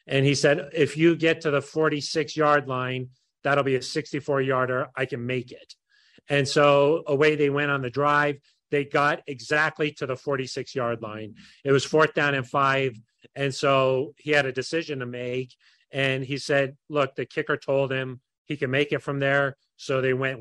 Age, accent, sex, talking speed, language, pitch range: 40-59, American, male, 190 wpm, English, 125-145 Hz